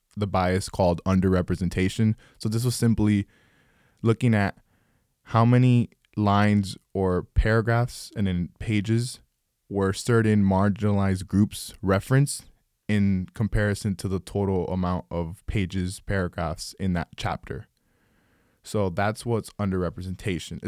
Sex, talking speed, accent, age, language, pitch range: male, 115 wpm, American, 20-39, English, 90-110 Hz